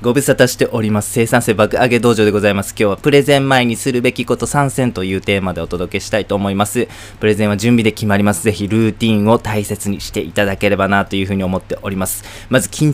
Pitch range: 100-125 Hz